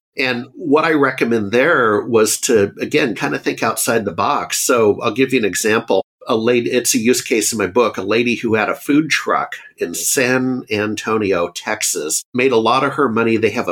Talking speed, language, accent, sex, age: 210 wpm, English, American, male, 50-69